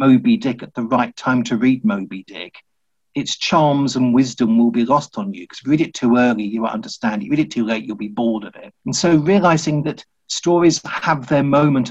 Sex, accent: male, British